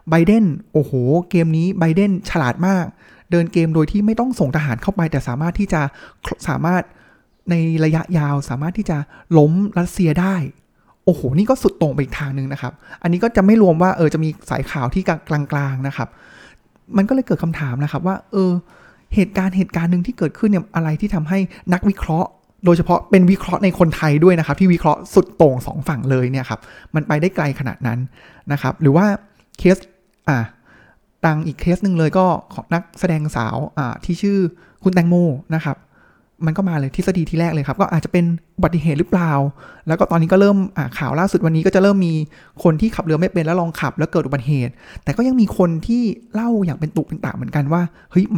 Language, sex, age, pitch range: Thai, male, 20-39, 150-190 Hz